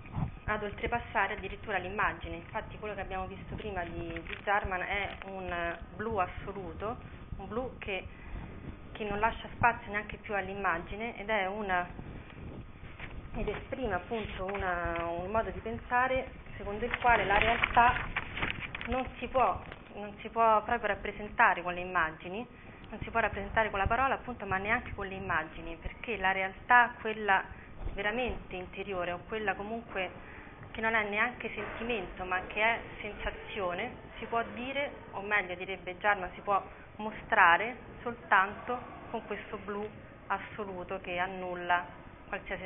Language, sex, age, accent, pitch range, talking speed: Italian, female, 30-49, native, 180-230 Hz, 145 wpm